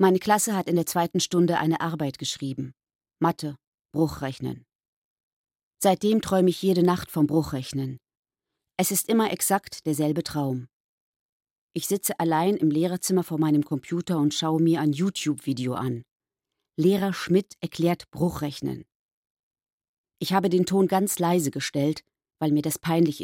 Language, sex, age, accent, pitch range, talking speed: German, female, 40-59, German, 155-195 Hz, 140 wpm